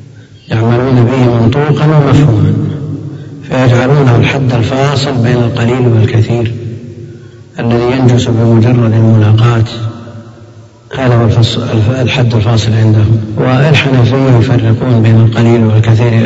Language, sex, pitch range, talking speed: Arabic, male, 110-125 Hz, 90 wpm